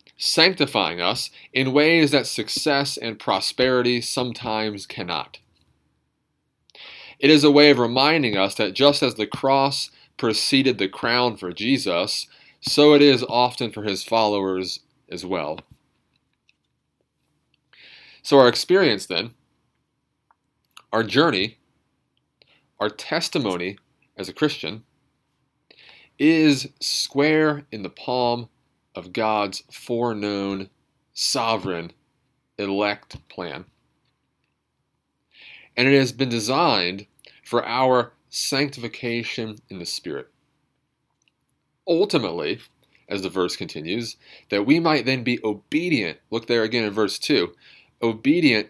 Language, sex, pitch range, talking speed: English, male, 105-140 Hz, 110 wpm